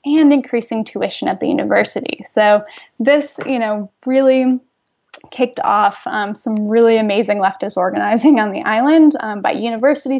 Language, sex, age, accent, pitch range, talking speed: English, female, 10-29, American, 215-280 Hz, 145 wpm